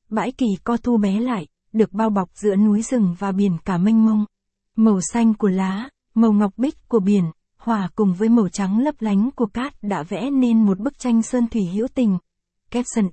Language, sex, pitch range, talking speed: Vietnamese, female, 200-235 Hz, 210 wpm